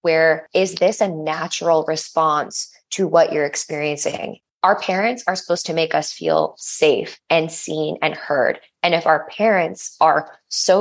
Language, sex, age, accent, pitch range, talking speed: English, female, 20-39, American, 155-180 Hz, 160 wpm